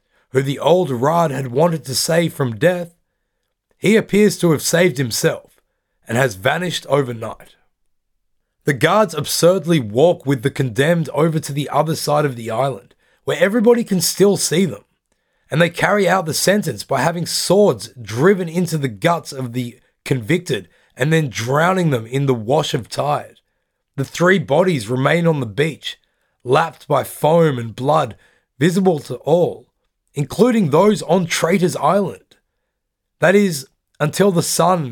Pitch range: 125-175 Hz